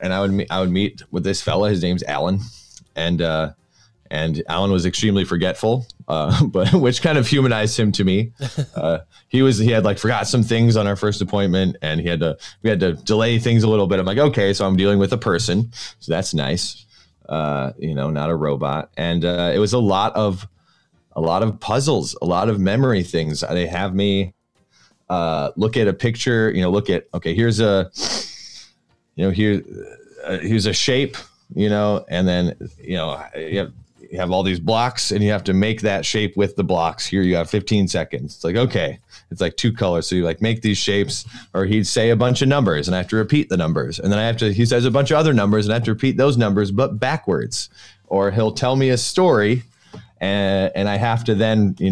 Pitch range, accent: 90-115 Hz, American